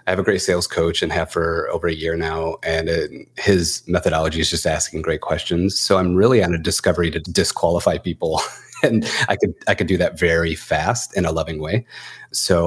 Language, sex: English, male